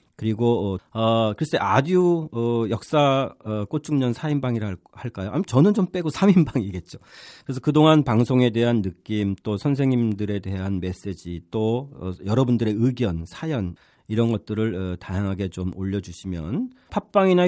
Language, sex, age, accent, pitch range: Korean, male, 40-59, native, 95-140 Hz